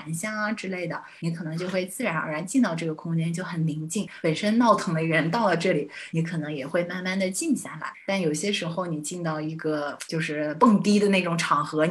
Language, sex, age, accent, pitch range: Chinese, female, 30-49, native, 160-185 Hz